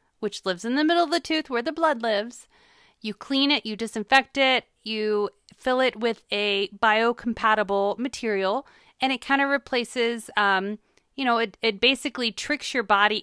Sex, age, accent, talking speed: female, 30-49, American, 175 wpm